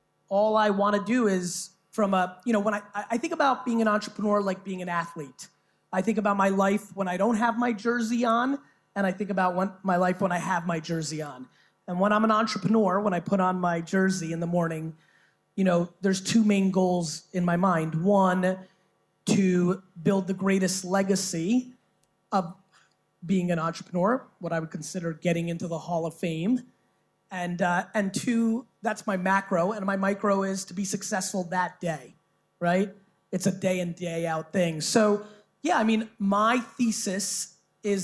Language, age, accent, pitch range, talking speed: English, 30-49, American, 175-205 Hz, 190 wpm